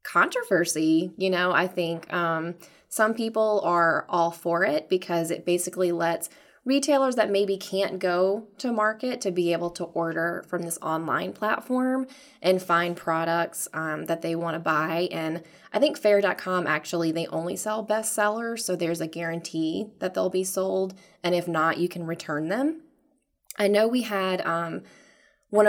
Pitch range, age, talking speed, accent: 165-200 Hz, 20-39, 170 wpm, American